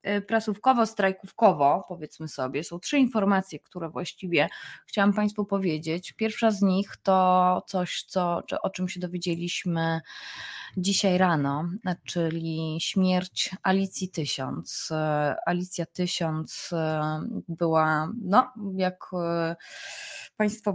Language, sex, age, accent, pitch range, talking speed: Polish, female, 20-39, native, 150-185 Hz, 100 wpm